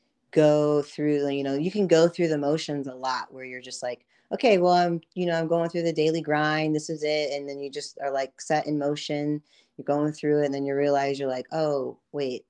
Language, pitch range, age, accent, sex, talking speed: English, 140-175 Hz, 40-59, American, female, 245 wpm